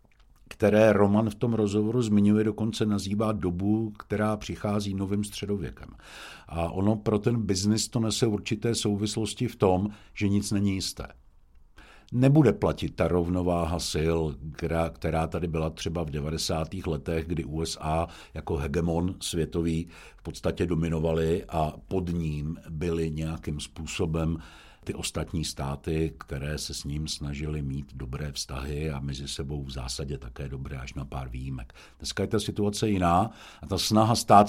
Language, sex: Czech, male